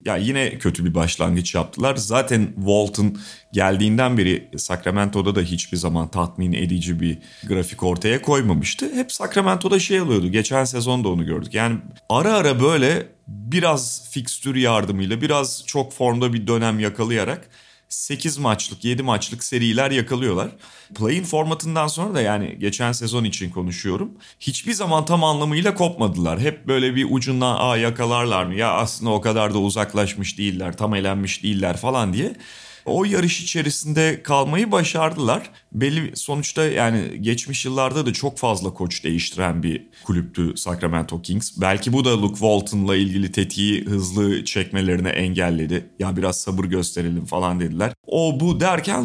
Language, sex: Turkish, male